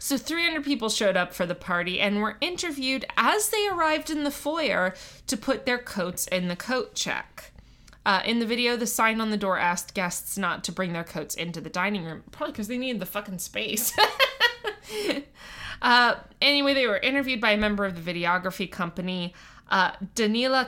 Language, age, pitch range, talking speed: English, 20-39, 180-260 Hz, 190 wpm